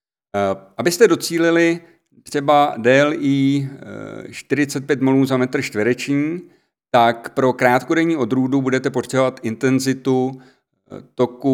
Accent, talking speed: native, 90 wpm